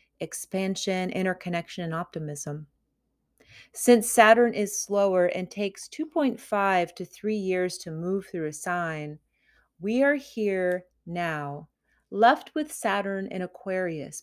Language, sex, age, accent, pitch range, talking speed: English, female, 30-49, American, 170-220 Hz, 120 wpm